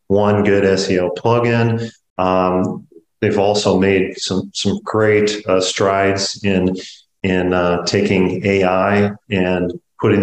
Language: English